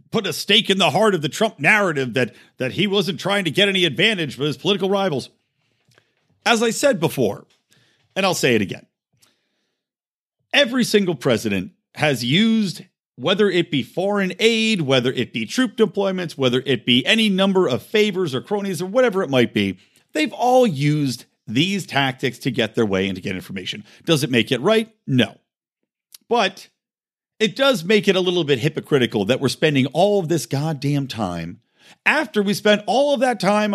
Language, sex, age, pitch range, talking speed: English, male, 50-69, 135-215 Hz, 185 wpm